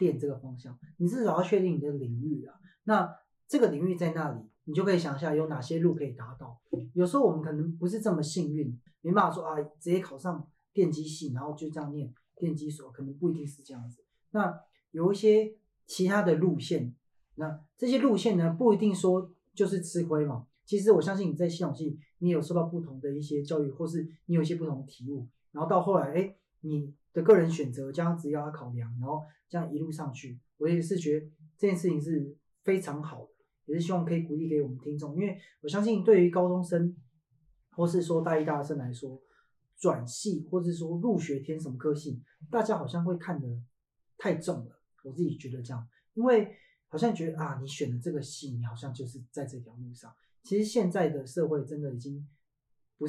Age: 30-49